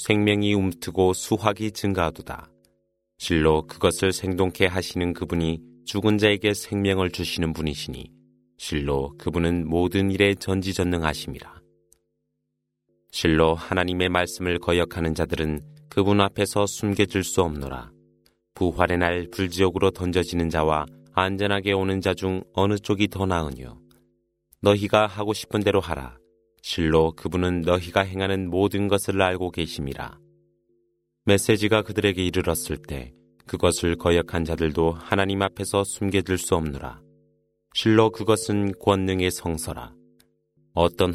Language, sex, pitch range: Korean, male, 85-100 Hz